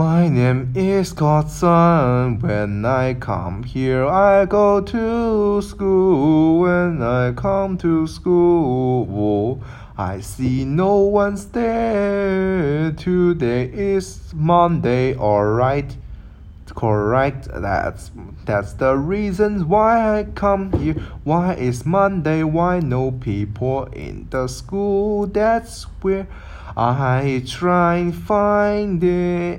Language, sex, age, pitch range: Chinese, male, 20-39, 125-195 Hz